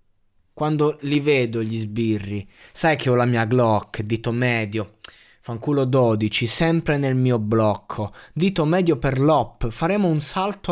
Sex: male